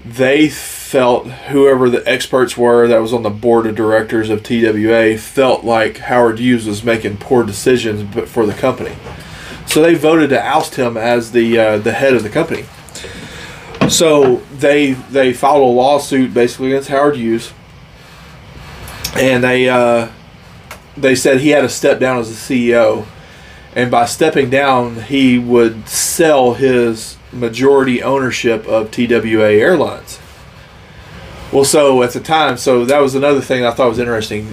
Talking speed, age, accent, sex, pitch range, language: 155 wpm, 30-49, American, male, 115-135 Hz, English